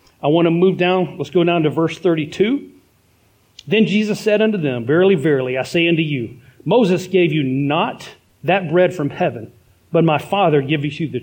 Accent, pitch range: American, 130-190 Hz